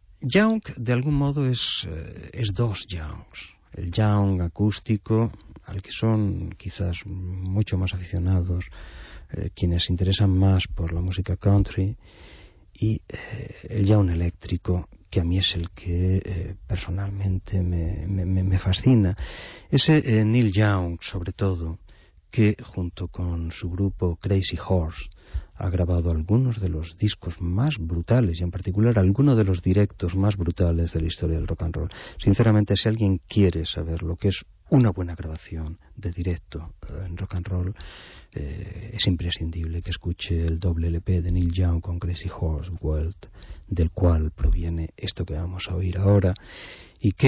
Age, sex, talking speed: 40-59, male, 155 wpm